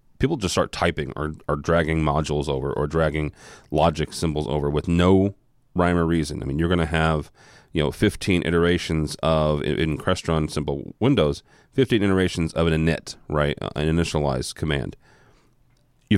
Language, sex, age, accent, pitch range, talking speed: English, male, 30-49, American, 80-95 Hz, 165 wpm